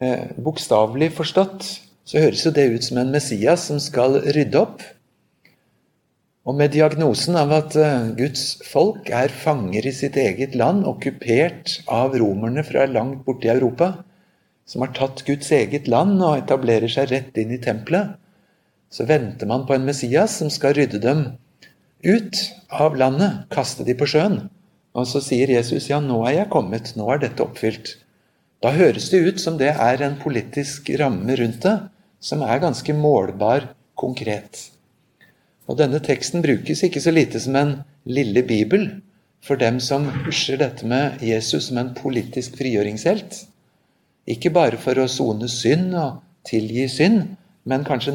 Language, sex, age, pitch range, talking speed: English, male, 60-79, 125-155 Hz, 160 wpm